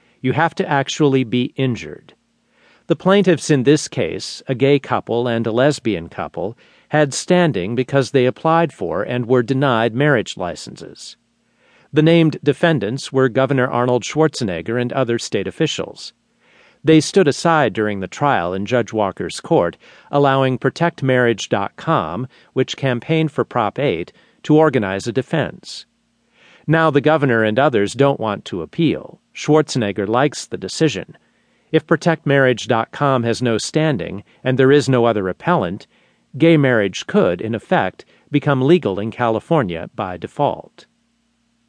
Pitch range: 115-155 Hz